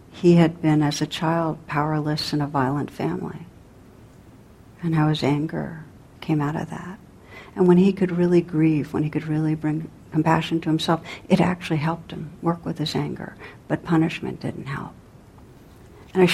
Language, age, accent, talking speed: English, 60-79, American, 175 wpm